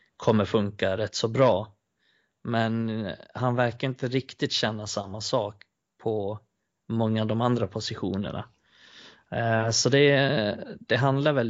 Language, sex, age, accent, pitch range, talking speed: Swedish, male, 30-49, native, 105-125 Hz, 125 wpm